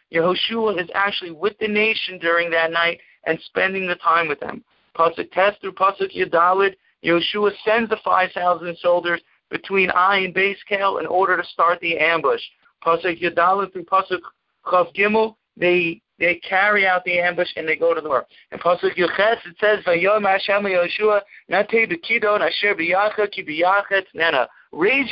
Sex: male